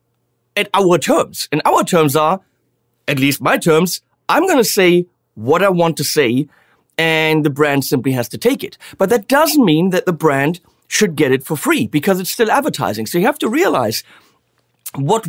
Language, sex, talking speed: English, male, 190 wpm